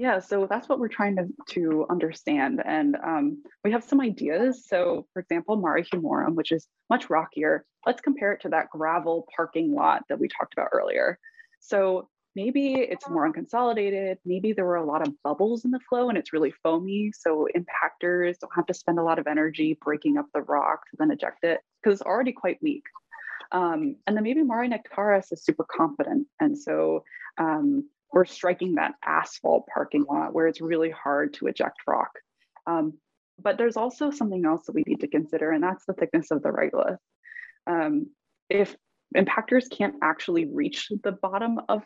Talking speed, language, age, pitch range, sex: 185 wpm, English, 20-39, 170-255 Hz, female